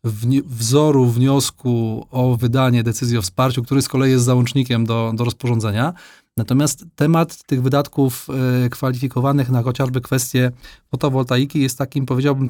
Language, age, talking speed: Polish, 30-49, 130 wpm